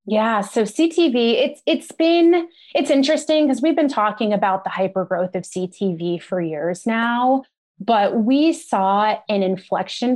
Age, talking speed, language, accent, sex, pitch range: 20-39, 150 wpm, English, American, female, 185-230 Hz